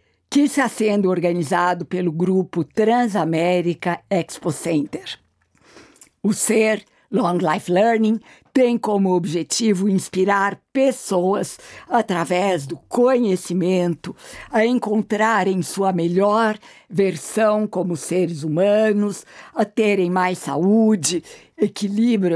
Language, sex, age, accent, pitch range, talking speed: Portuguese, female, 60-79, Brazilian, 175-220 Hz, 95 wpm